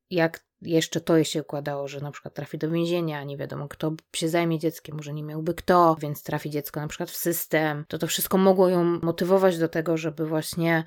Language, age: Polish, 20-39